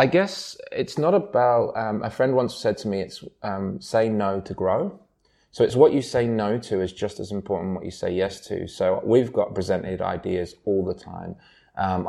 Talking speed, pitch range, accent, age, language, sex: 215 wpm, 95-110 Hz, British, 20-39, English, male